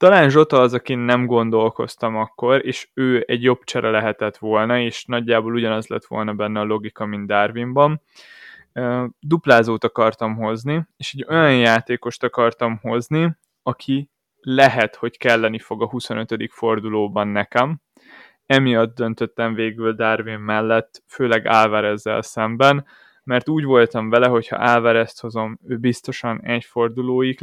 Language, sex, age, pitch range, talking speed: Hungarian, male, 20-39, 110-130 Hz, 135 wpm